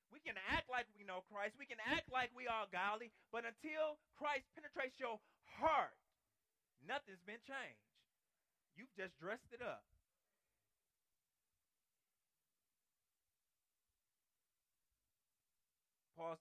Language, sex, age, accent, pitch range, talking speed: English, male, 30-49, American, 145-240 Hz, 105 wpm